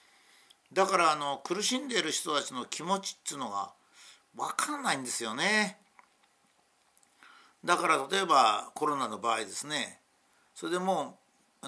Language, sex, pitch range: Japanese, male, 130-190 Hz